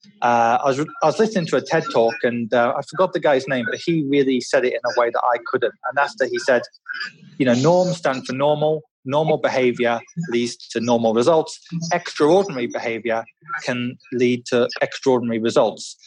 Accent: British